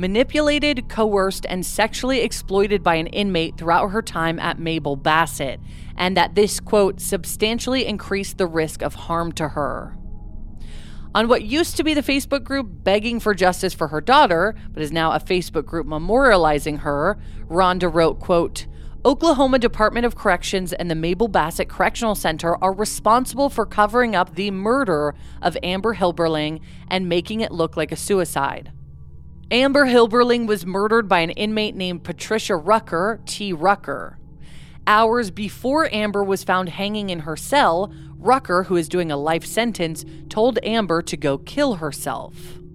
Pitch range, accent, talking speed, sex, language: 160-220 Hz, American, 155 wpm, female, English